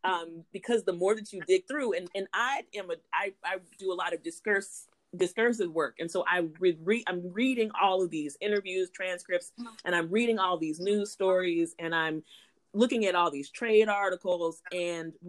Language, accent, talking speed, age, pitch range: English, American, 195 wpm, 30-49, 175-225 Hz